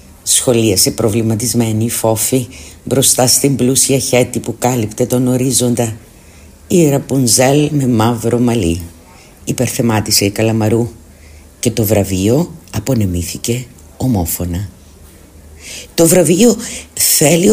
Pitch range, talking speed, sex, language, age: 95-130 Hz, 95 wpm, female, Greek, 50-69